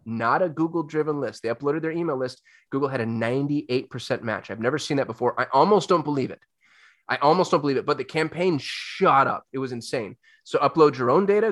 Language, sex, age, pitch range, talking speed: English, male, 20-39, 135-170 Hz, 225 wpm